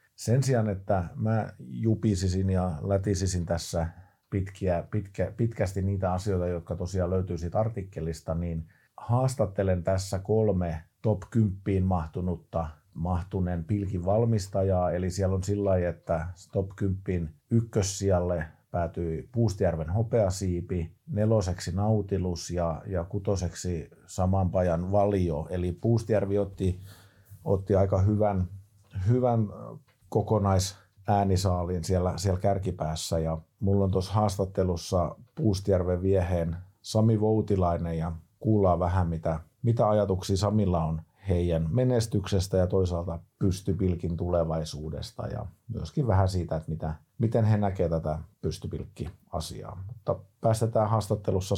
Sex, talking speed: male, 105 wpm